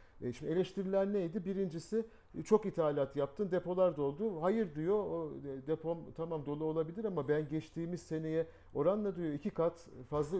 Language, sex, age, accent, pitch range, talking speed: Turkish, male, 50-69, native, 125-175 Hz, 140 wpm